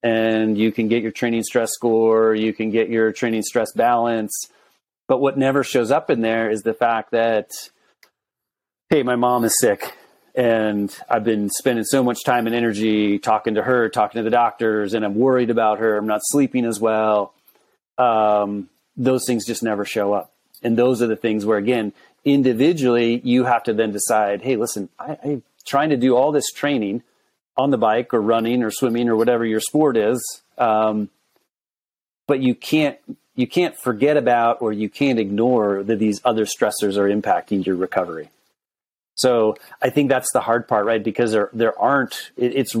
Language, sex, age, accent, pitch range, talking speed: English, male, 30-49, American, 110-125 Hz, 185 wpm